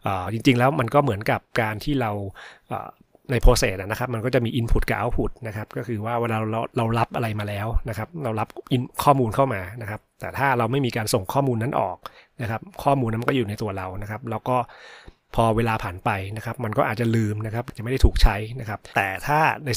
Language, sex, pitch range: Thai, male, 110-125 Hz